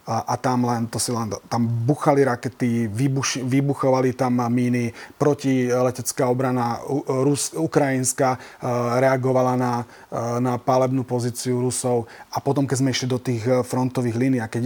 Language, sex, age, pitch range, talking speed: Slovak, male, 30-49, 115-130 Hz, 140 wpm